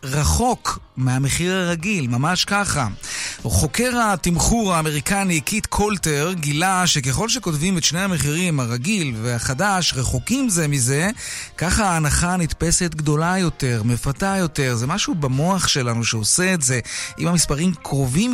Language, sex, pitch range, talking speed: Hebrew, male, 135-180 Hz, 125 wpm